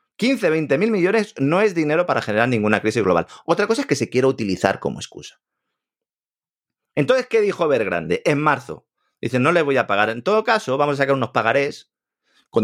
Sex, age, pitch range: male, 30-49, 110-180 Hz